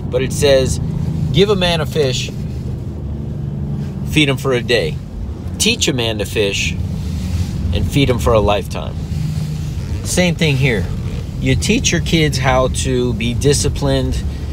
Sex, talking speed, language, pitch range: male, 145 wpm, English, 100-135 Hz